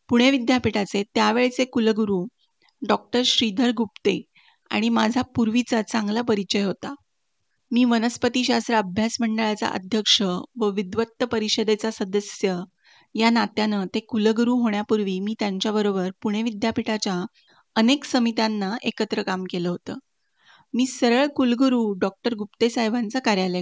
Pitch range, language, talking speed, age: 210-240 Hz, Marathi, 110 wpm, 30-49